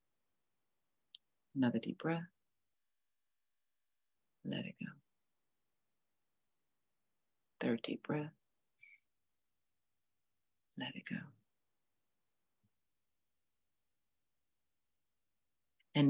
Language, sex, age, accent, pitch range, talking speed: English, female, 40-59, American, 125-155 Hz, 50 wpm